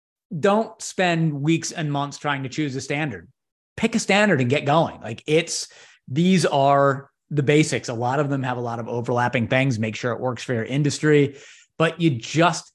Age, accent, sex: 30-49, American, male